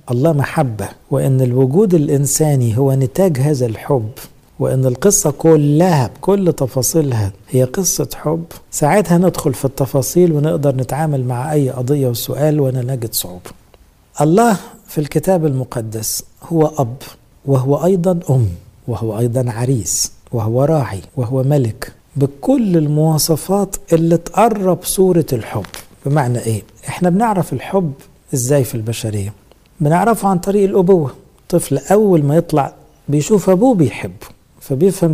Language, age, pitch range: Arabic, 60-79, 125-175 Hz